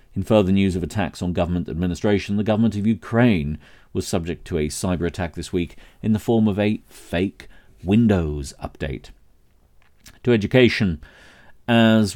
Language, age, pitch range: English, 40-59, 85-105 Hz